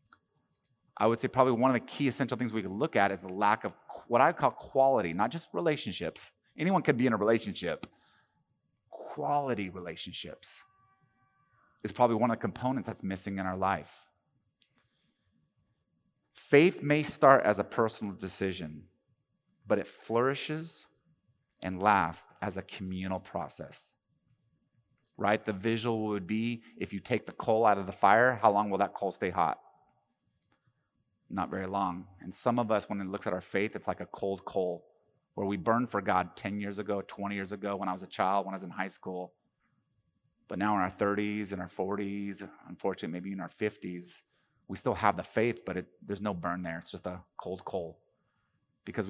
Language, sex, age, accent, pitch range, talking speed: English, male, 30-49, American, 95-115 Hz, 185 wpm